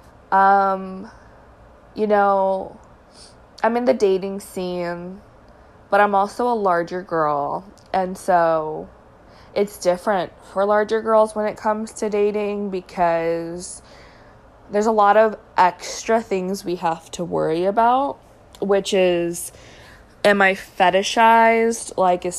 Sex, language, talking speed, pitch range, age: female, English, 120 wpm, 170-210 Hz, 20-39